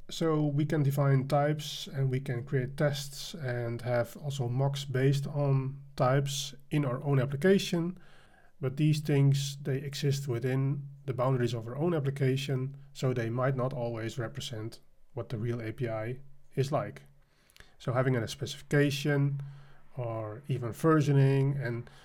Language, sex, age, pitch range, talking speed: English, male, 30-49, 120-140 Hz, 145 wpm